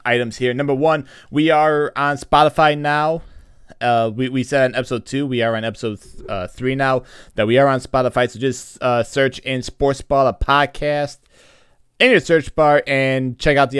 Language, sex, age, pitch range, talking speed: English, male, 20-39, 120-145 Hz, 195 wpm